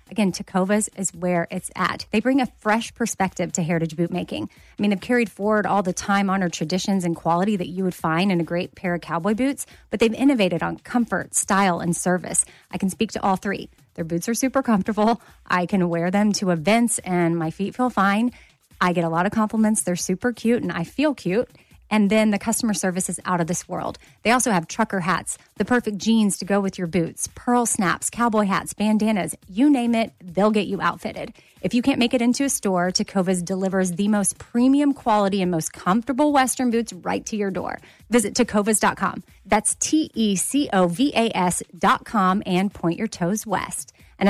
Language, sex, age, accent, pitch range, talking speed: English, female, 30-49, American, 185-230 Hz, 200 wpm